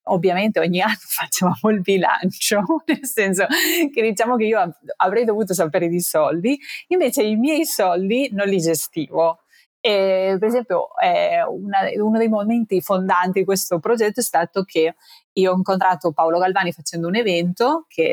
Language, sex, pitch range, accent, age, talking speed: Italian, female, 170-225 Hz, native, 30-49, 155 wpm